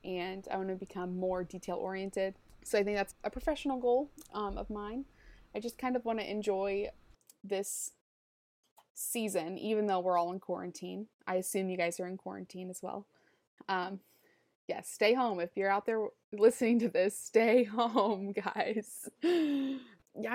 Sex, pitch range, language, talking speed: female, 180-220 Hz, English, 170 wpm